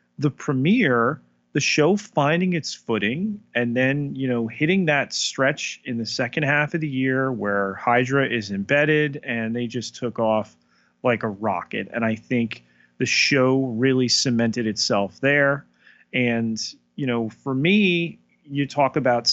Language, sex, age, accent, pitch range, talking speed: English, male, 30-49, American, 110-140 Hz, 155 wpm